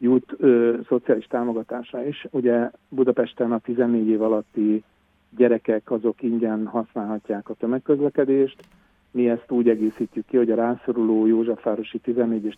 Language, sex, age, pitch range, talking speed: Hungarian, male, 50-69, 110-120 Hz, 135 wpm